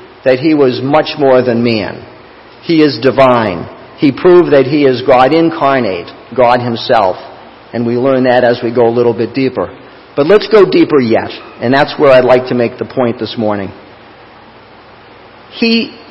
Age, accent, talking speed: 50-69, American, 175 wpm